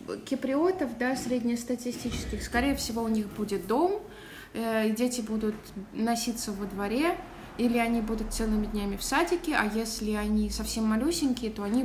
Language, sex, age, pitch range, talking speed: Russian, female, 20-39, 195-235 Hz, 145 wpm